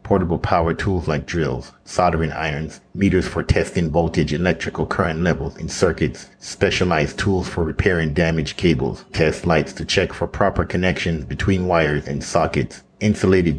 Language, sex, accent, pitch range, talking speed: English, male, American, 80-90 Hz, 150 wpm